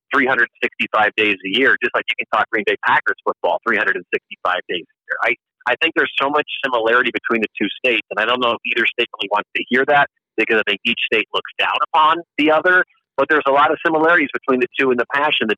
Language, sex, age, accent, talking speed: English, male, 40-59, American, 245 wpm